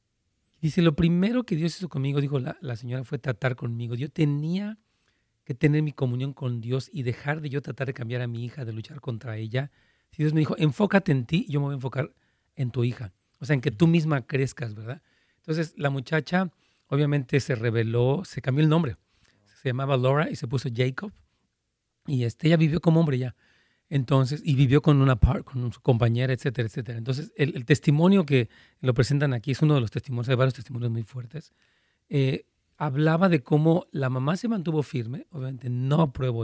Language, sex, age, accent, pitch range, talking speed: Spanish, male, 40-59, Mexican, 125-160 Hz, 205 wpm